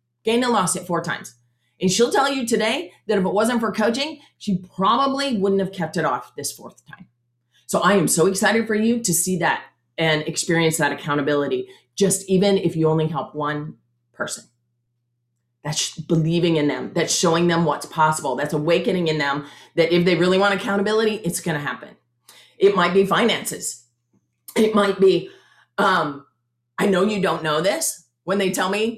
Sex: female